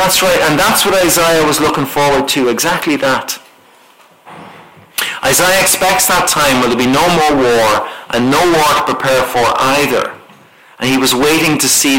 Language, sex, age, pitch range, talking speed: English, male, 40-59, 130-175 Hz, 175 wpm